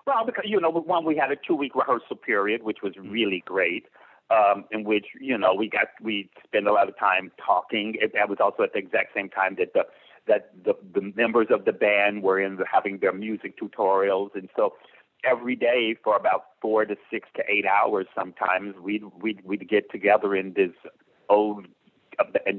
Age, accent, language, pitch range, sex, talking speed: 50-69, American, English, 95-120 Hz, male, 200 wpm